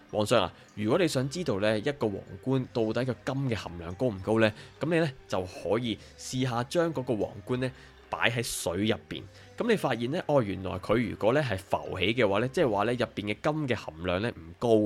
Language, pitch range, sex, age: Chinese, 95-125 Hz, male, 20-39